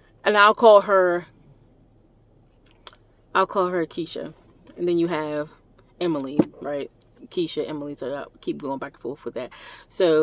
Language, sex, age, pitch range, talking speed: English, female, 20-39, 150-185 Hz, 155 wpm